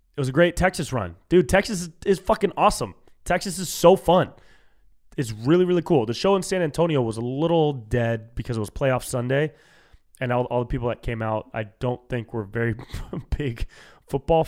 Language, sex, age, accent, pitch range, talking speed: English, male, 20-39, American, 105-135 Hz, 200 wpm